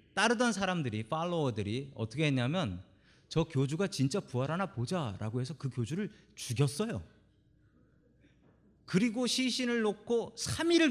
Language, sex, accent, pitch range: Korean, male, native, 105-160 Hz